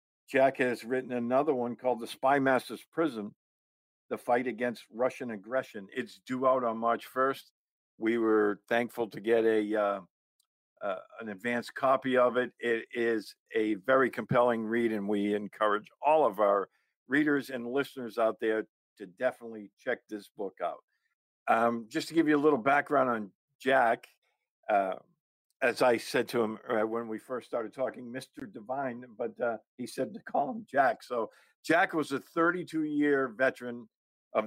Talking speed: 165 wpm